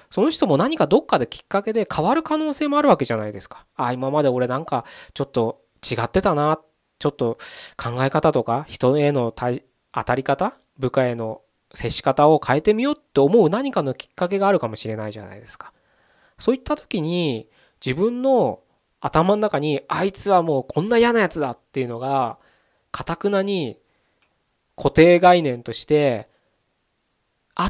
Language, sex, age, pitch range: Japanese, male, 20-39, 125-195 Hz